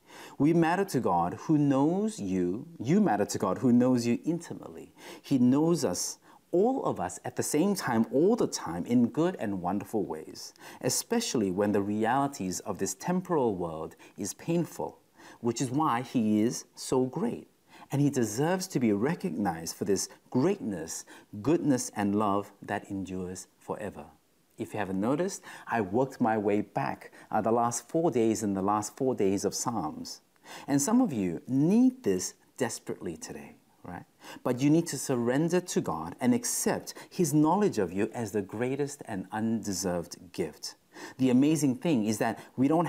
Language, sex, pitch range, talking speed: English, male, 105-150 Hz, 170 wpm